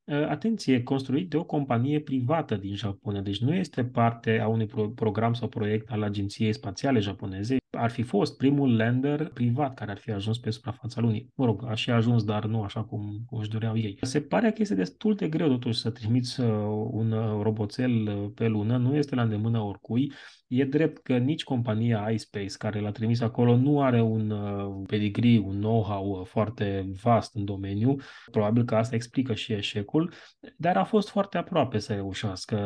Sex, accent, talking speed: male, native, 180 wpm